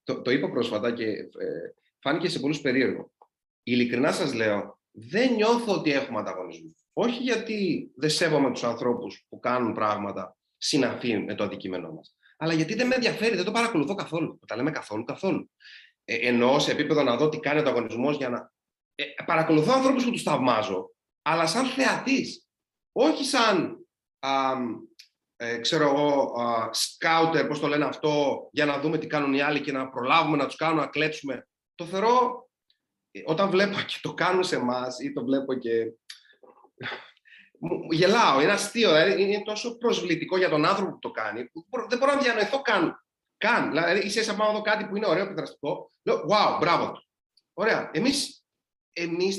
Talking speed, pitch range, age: 175 wpm, 145-240 Hz, 30-49